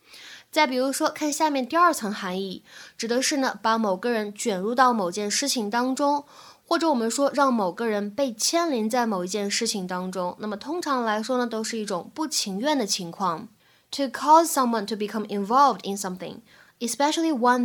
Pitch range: 205-275 Hz